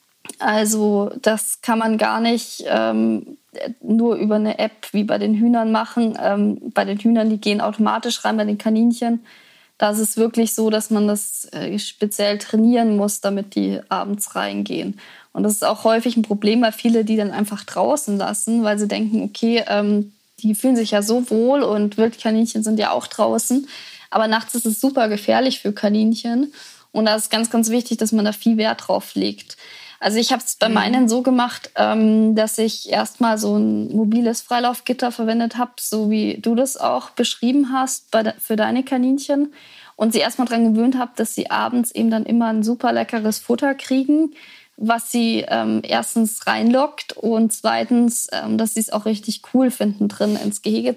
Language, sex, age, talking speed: German, female, 20-39, 190 wpm